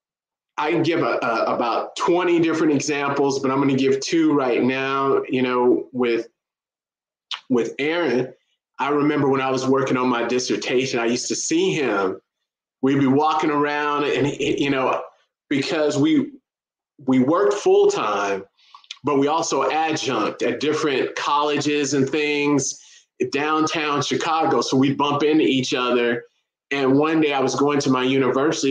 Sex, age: male, 30-49